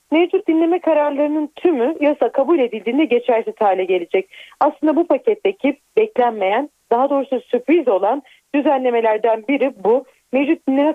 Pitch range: 220-295 Hz